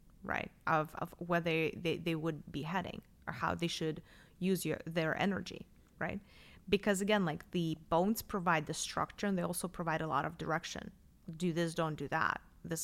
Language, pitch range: English, 165-200 Hz